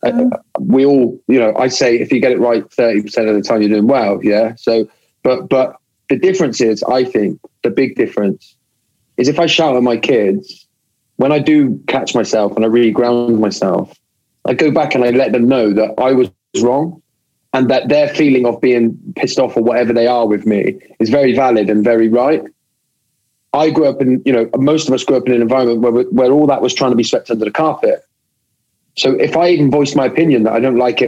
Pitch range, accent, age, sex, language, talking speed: 110-145 Hz, British, 30-49, male, English, 230 wpm